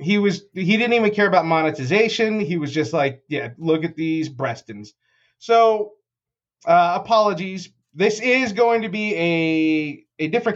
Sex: male